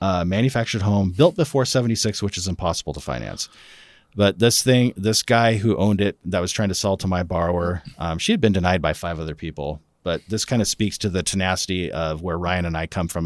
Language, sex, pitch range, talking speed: English, male, 90-115 Hz, 230 wpm